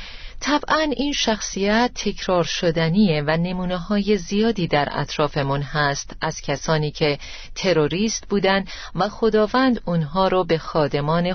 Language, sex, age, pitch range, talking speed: Persian, female, 40-59, 160-225 Hz, 120 wpm